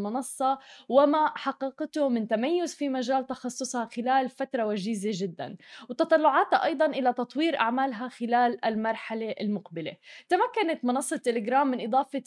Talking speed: 120 wpm